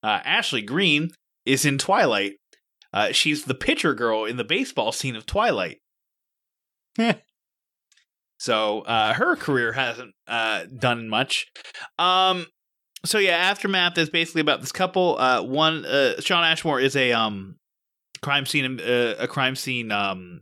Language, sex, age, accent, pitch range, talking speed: English, male, 20-39, American, 115-140 Hz, 145 wpm